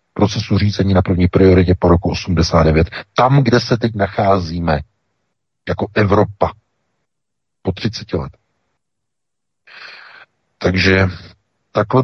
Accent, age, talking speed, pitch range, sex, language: native, 50-69, 100 wpm, 85-105 Hz, male, Czech